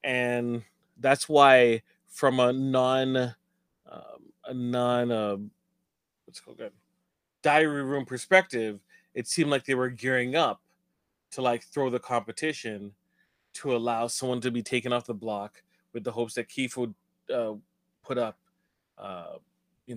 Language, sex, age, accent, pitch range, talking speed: English, male, 30-49, American, 120-145 Hz, 145 wpm